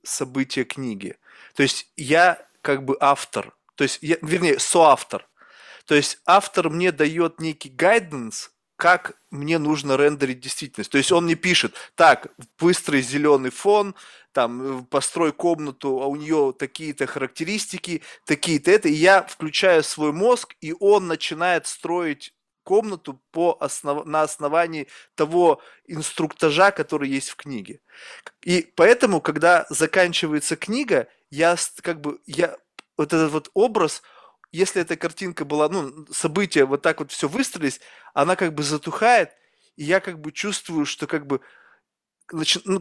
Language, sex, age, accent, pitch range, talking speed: Russian, male, 20-39, native, 145-175 Hz, 140 wpm